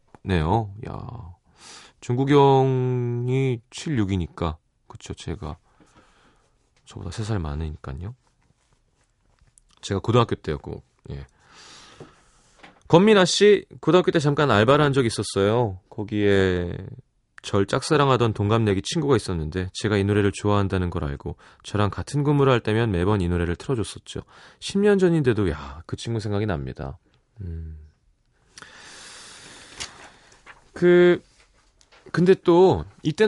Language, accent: Korean, native